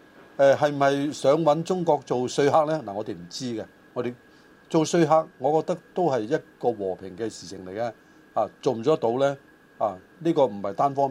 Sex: male